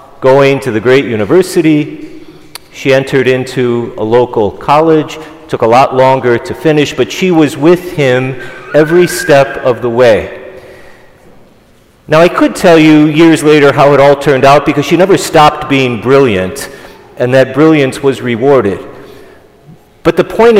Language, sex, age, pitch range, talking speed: English, male, 40-59, 130-160 Hz, 155 wpm